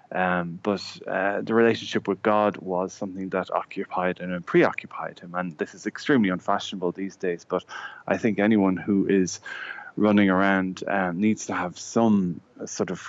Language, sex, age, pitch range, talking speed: English, male, 20-39, 90-105 Hz, 165 wpm